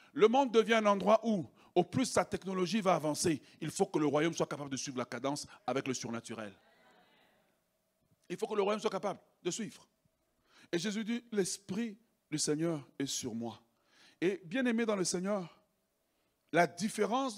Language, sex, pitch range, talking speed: French, male, 150-220 Hz, 180 wpm